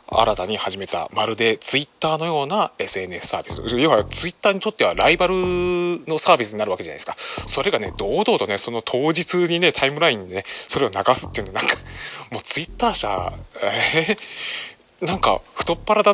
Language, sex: Japanese, male